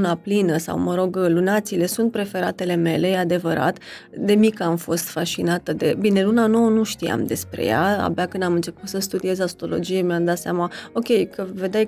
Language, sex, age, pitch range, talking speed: Romanian, female, 20-39, 185-225 Hz, 180 wpm